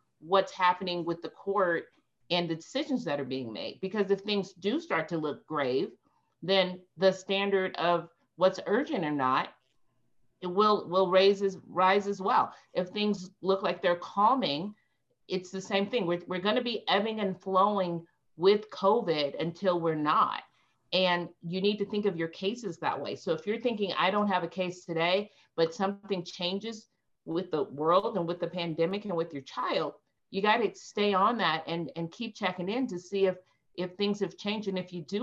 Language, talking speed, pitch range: English, 195 wpm, 165-200 Hz